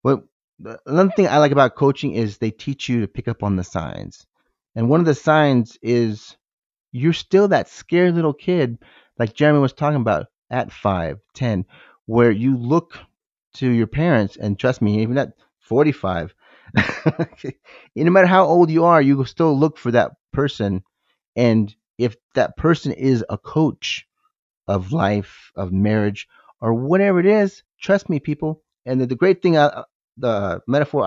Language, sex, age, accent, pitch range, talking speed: English, male, 30-49, American, 110-155 Hz, 165 wpm